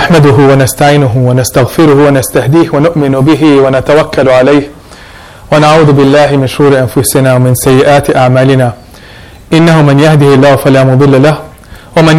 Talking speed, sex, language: 120 wpm, male, English